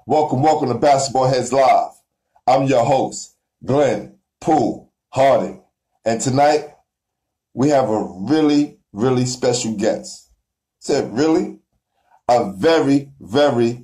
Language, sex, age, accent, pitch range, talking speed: English, male, 50-69, American, 135-160 Hz, 115 wpm